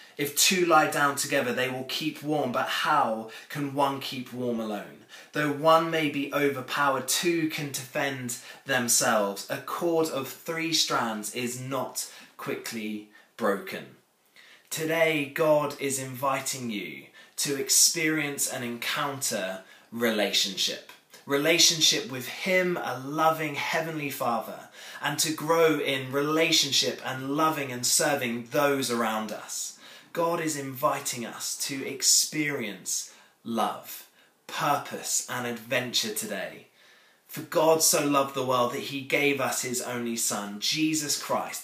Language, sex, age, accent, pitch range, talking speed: English, male, 20-39, British, 125-155 Hz, 130 wpm